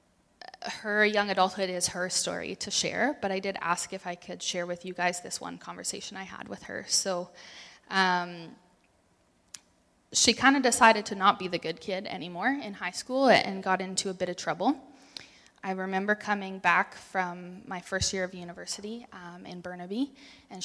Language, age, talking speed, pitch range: English, 20-39, 185 wpm, 185-230 Hz